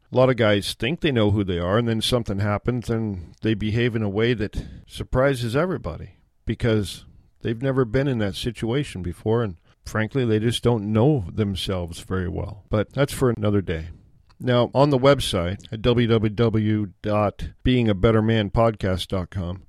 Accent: American